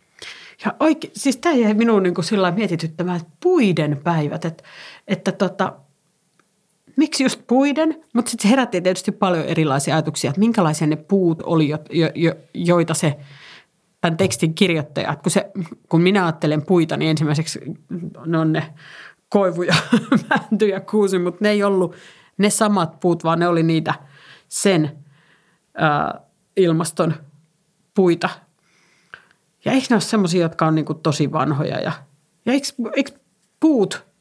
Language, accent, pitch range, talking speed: Finnish, native, 160-200 Hz, 140 wpm